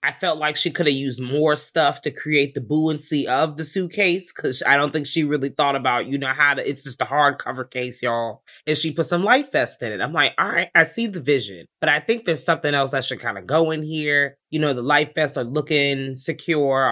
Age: 20-39